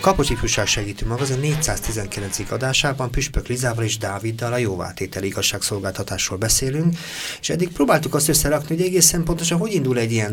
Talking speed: 145 wpm